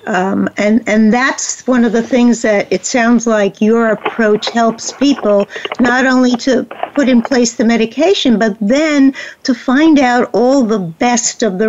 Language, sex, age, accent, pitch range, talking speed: English, female, 60-79, American, 210-260 Hz, 175 wpm